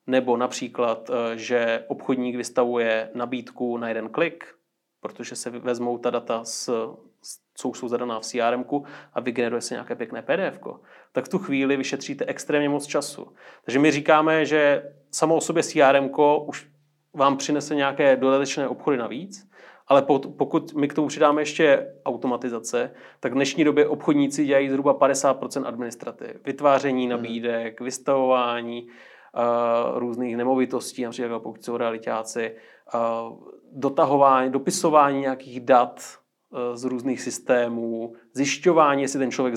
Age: 30-49